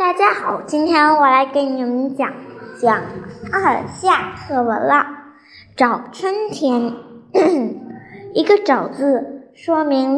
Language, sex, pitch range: Chinese, male, 235-320 Hz